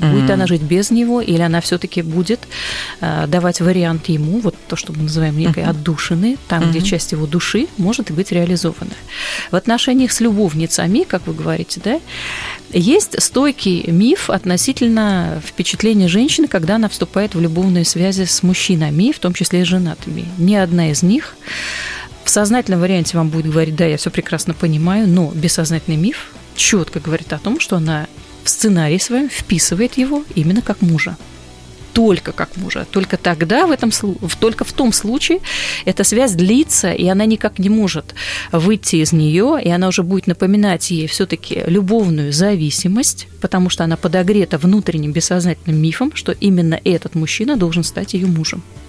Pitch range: 165-210 Hz